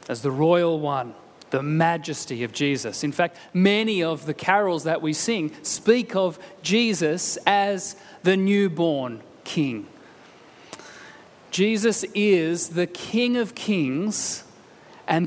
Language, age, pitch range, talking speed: English, 30-49, 165-210 Hz, 120 wpm